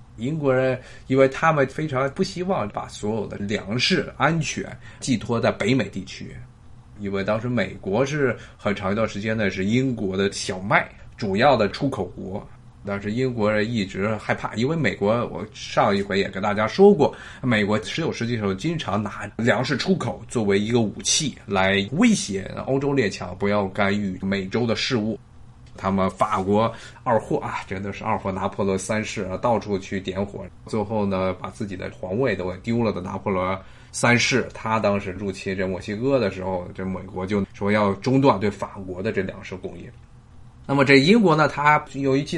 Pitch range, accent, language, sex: 100-130 Hz, native, Chinese, male